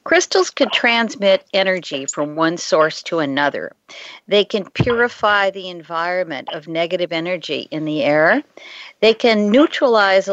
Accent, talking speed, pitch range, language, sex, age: American, 135 wpm, 170-230 Hz, English, female, 50-69